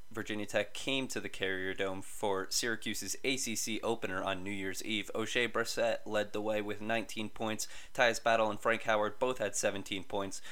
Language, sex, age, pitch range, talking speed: English, male, 20-39, 95-110 Hz, 185 wpm